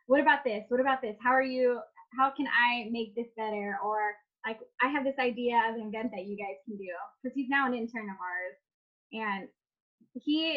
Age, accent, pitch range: 10-29, American, 210-265 Hz